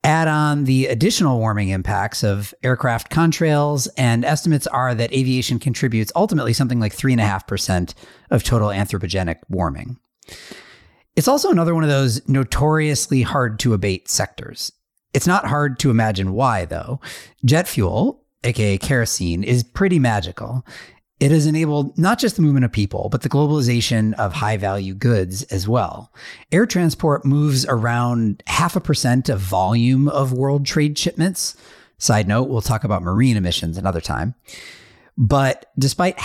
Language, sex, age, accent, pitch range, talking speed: English, male, 40-59, American, 105-140 Hz, 155 wpm